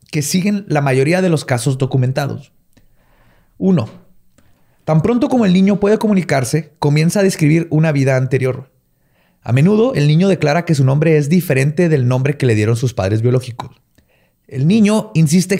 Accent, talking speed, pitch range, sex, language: Mexican, 165 wpm, 130-175 Hz, male, Spanish